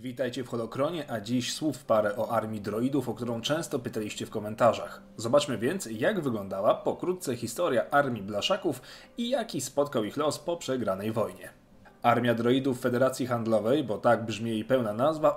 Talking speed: 165 wpm